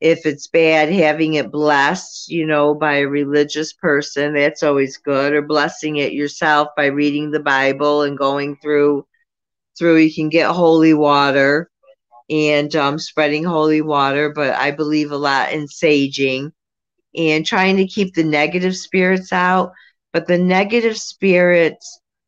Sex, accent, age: female, American, 50-69